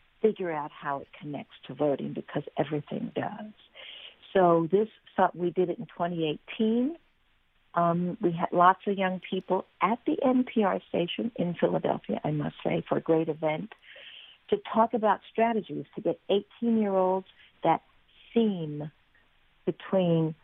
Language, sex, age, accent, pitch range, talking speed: English, female, 50-69, American, 165-210 Hz, 140 wpm